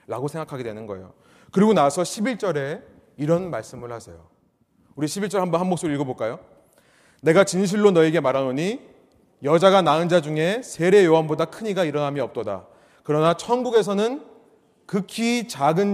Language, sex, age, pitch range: Korean, male, 30-49, 130-200 Hz